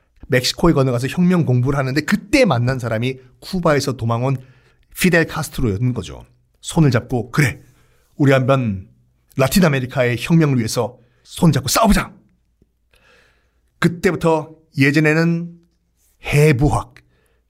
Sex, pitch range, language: male, 125-165 Hz, Korean